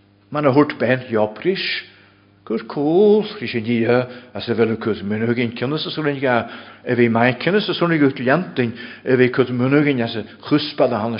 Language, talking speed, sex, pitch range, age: English, 165 wpm, male, 105-140 Hz, 60-79